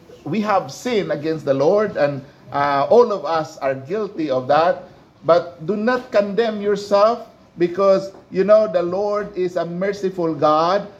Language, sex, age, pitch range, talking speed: English, male, 50-69, 170-205 Hz, 160 wpm